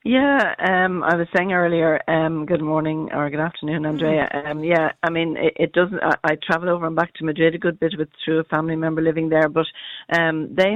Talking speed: 230 wpm